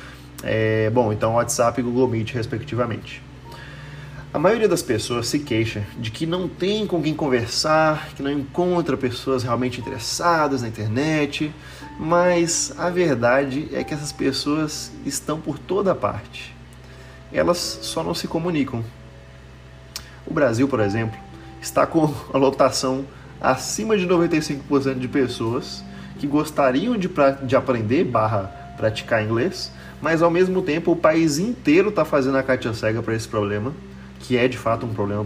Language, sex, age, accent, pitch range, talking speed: English, male, 30-49, Brazilian, 110-150 Hz, 145 wpm